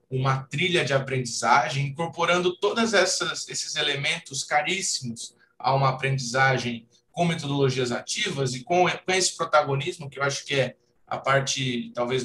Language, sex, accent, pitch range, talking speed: Portuguese, male, Brazilian, 125-170 Hz, 130 wpm